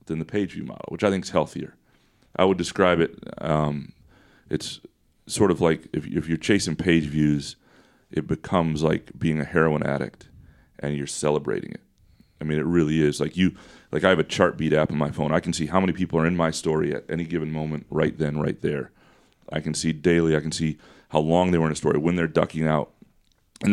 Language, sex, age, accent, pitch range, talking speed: English, male, 30-49, American, 75-85 Hz, 225 wpm